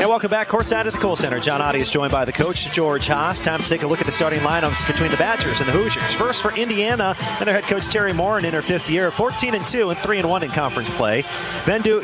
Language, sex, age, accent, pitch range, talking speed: English, male, 40-59, American, 165-210 Hz, 270 wpm